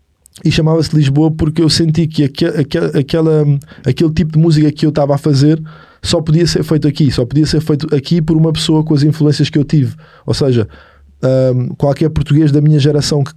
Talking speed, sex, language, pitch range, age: 200 wpm, male, Portuguese, 145-160 Hz, 20-39